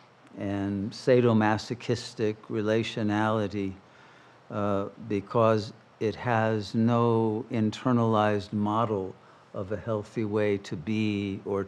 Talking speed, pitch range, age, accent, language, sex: 85 wpm, 110-130 Hz, 60-79, American, English, male